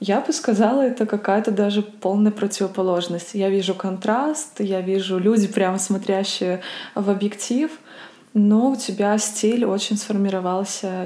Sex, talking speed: female, 130 wpm